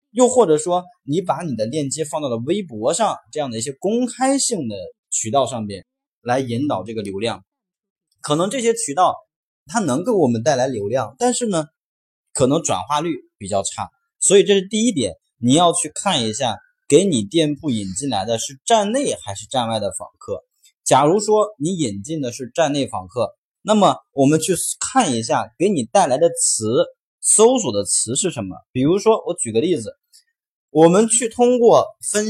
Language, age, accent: Chinese, 20-39, native